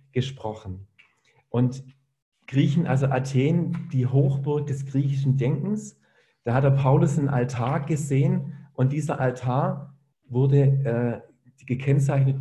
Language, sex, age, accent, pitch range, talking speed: German, male, 40-59, German, 135-160 Hz, 110 wpm